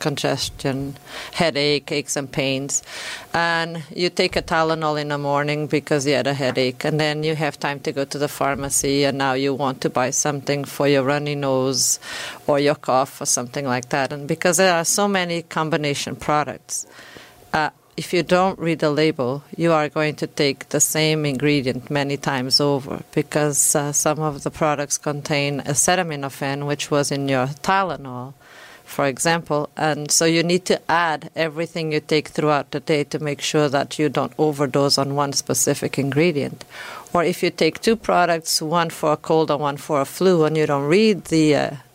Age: 40-59